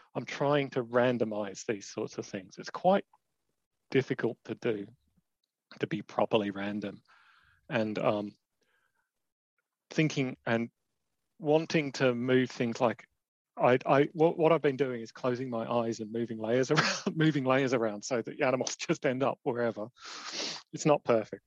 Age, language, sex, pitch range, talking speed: 30-49, English, male, 110-155 Hz, 155 wpm